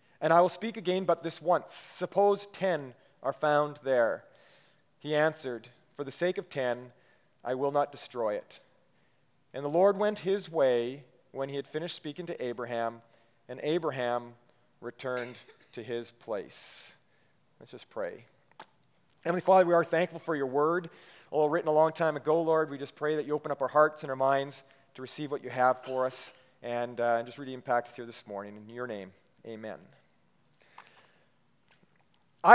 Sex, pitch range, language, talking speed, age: male, 135-175 Hz, English, 175 wpm, 40-59